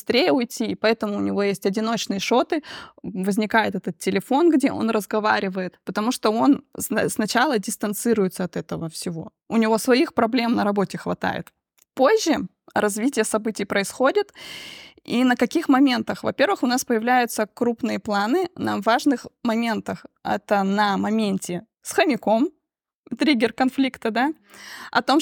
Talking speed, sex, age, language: 130 wpm, female, 20-39, Russian